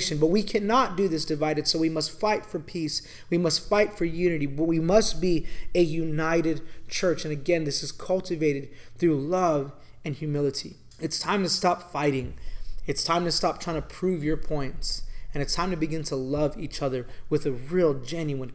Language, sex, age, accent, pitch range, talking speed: English, male, 20-39, American, 145-175 Hz, 195 wpm